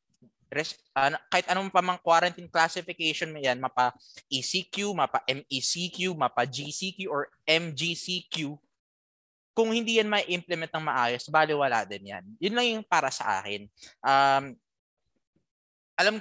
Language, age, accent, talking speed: Filipino, 20-39, native, 105 wpm